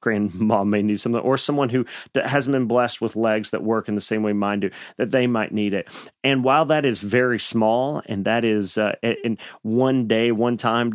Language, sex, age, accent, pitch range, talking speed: English, male, 40-59, American, 115-135 Hz, 220 wpm